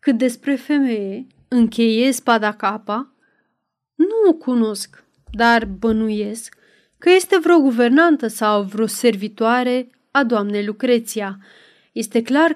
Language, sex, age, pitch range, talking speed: Romanian, female, 30-49, 220-295 Hz, 110 wpm